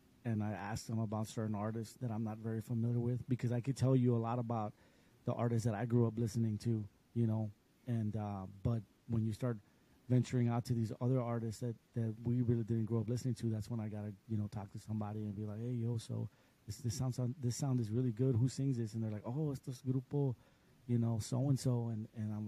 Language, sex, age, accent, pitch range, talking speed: English, male, 30-49, American, 110-125 Hz, 250 wpm